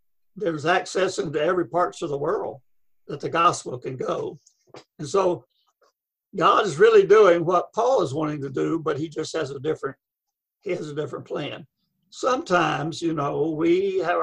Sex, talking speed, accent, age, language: male, 175 wpm, American, 60-79, English